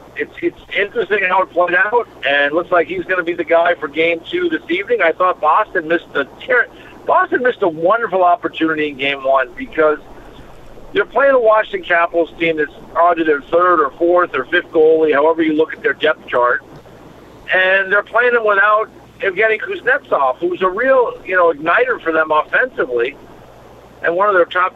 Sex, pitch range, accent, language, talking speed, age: male, 160-250 Hz, American, English, 195 wpm, 50-69